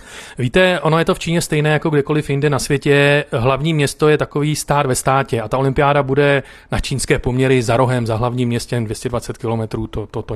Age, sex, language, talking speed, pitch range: 40-59, male, Czech, 210 wpm, 130-145 Hz